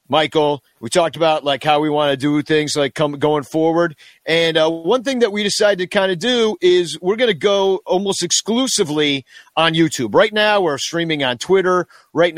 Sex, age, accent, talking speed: male, 40-59, American, 205 wpm